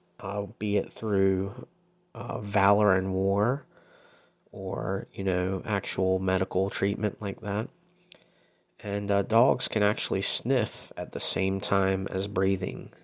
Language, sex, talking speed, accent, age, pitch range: English, male, 130 wpm, American, 30-49, 95-110 Hz